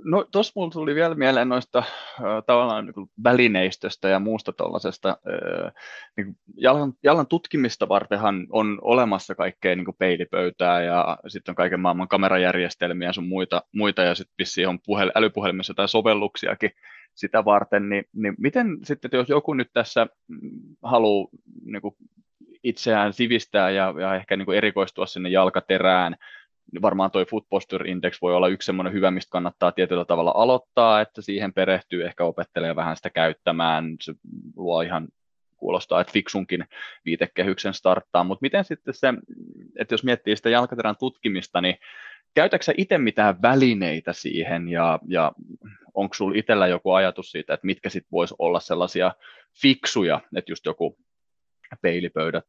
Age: 20-39